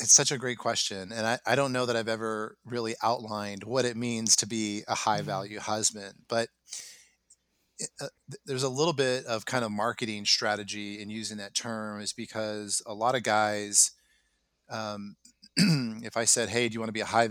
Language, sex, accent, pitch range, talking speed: English, male, American, 100-115 Hz, 200 wpm